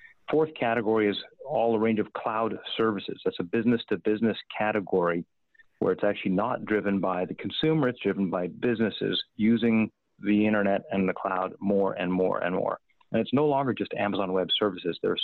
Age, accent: 40-59, American